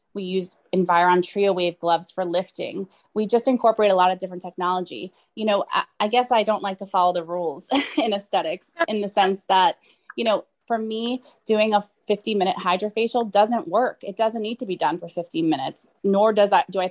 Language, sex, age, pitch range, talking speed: English, female, 20-39, 185-235 Hz, 205 wpm